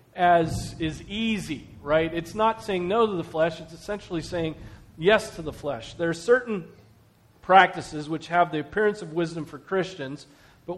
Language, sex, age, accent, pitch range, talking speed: English, male, 40-59, American, 145-200 Hz, 175 wpm